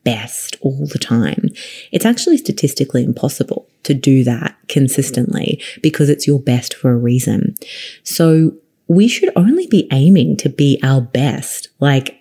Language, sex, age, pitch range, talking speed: English, female, 30-49, 130-165 Hz, 145 wpm